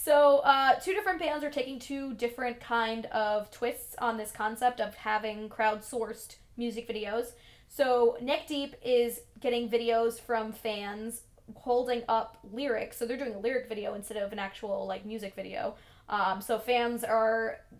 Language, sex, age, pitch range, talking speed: English, female, 20-39, 205-235 Hz, 160 wpm